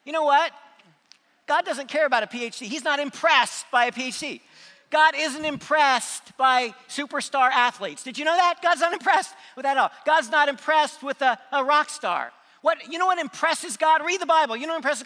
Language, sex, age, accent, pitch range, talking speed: English, male, 50-69, American, 245-295 Hz, 210 wpm